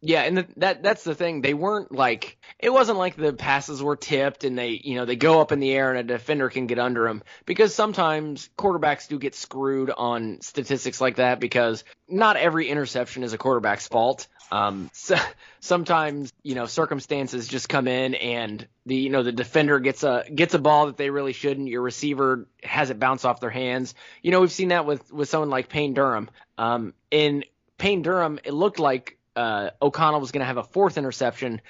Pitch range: 125-155 Hz